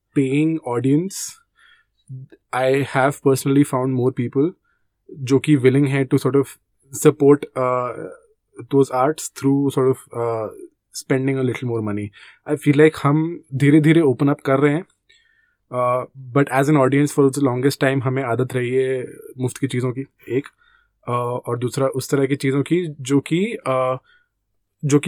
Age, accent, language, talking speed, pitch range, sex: 20-39, Indian, English, 130 wpm, 125-150 Hz, male